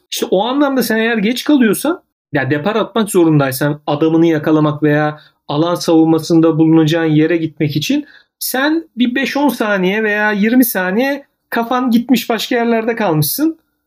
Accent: native